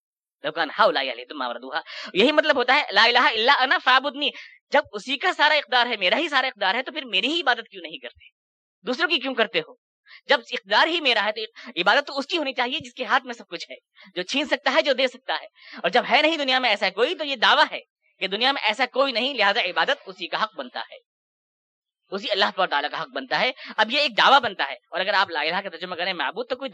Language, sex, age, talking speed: Urdu, female, 20-39, 225 wpm